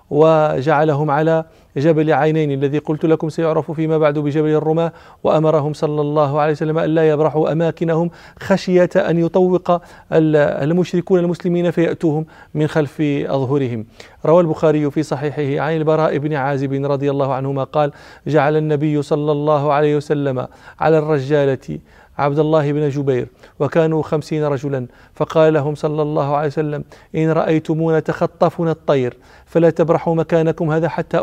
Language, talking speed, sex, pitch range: Arabic, 140 wpm, male, 150-165 Hz